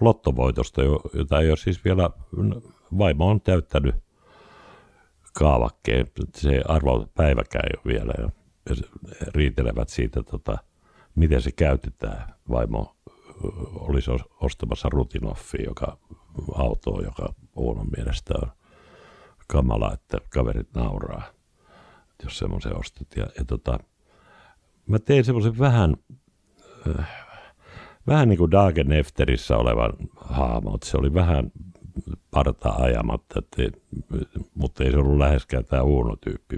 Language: Finnish